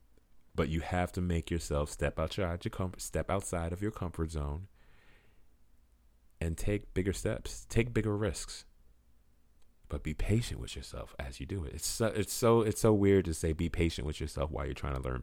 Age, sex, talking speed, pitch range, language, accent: 30-49, male, 195 wpm, 65-90 Hz, English, American